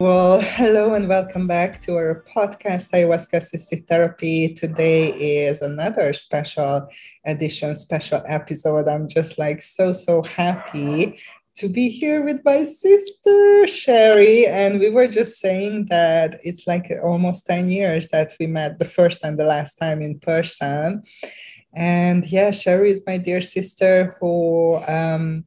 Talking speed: 145 wpm